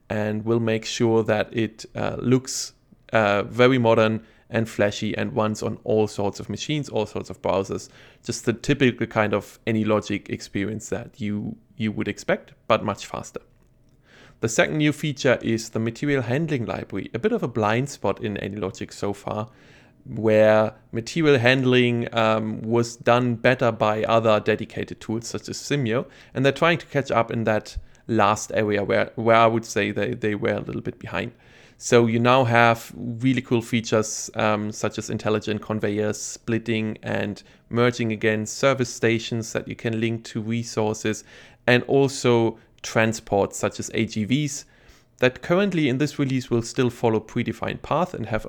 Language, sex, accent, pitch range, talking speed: English, male, German, 110-125 Hz, 170 wpm